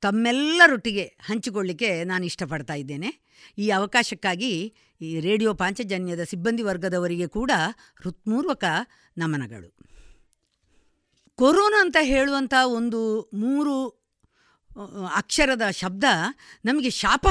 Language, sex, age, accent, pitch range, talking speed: Kannada, female, 50-69, native, 205-310 Hz, 80 wpm